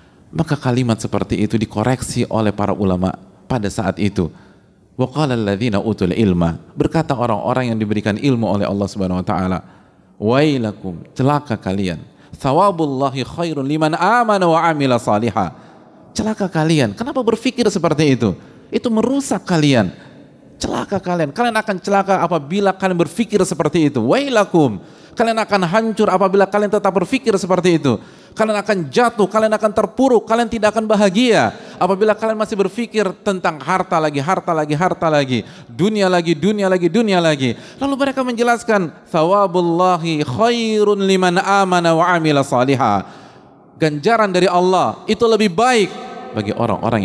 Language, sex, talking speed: Indonesian, male, 135 wpm